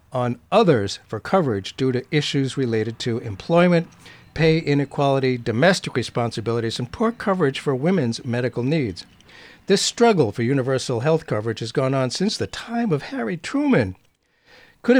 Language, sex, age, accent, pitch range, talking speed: English, male, 60-79, American, 120-170 Hz, 150 wpm